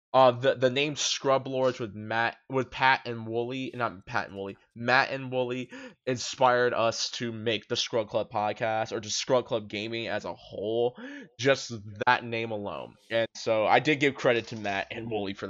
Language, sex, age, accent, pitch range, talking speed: English, male, 20-39, American, 110-135 Hz, 195 wpm